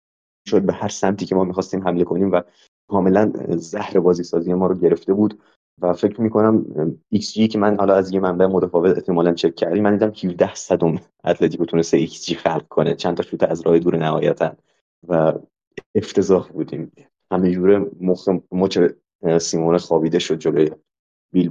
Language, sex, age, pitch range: Persian, male, 20-39, 85-100 Hz